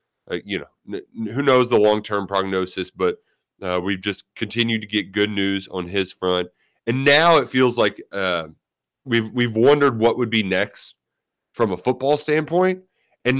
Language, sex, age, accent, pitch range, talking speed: English, male, 30-49, American, 100-130 Hz, 185 wpm